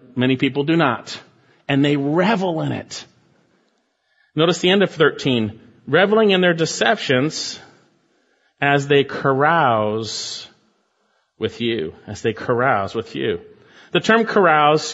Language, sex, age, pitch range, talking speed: English, male, 40-59, 125-170 Hz, 125 wpm